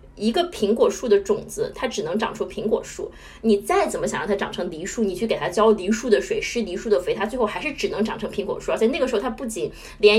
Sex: female